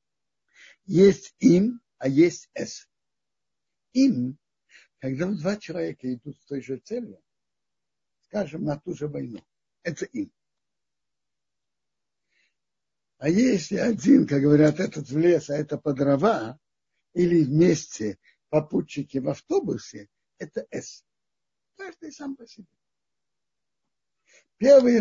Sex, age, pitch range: male, 60-79, 160-245 Hz